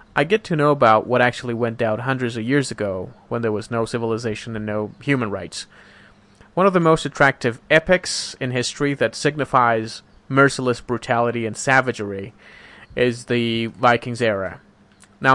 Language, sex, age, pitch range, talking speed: English, male, 30-49, 110-135 Hz, 160 wpm